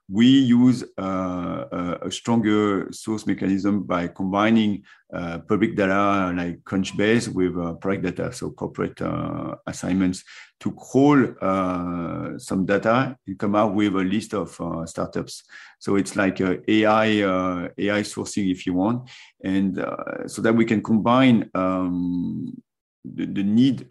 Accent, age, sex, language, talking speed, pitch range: French, 50-69, male, English, 145 wpm, 90-115 Hz